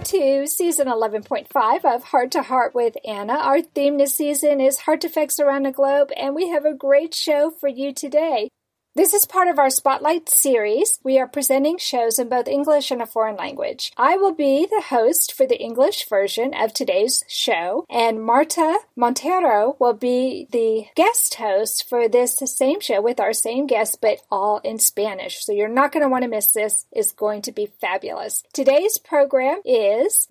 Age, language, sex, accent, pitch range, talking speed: 40-59, English, female, American, 235-310 Hz, 190 wpm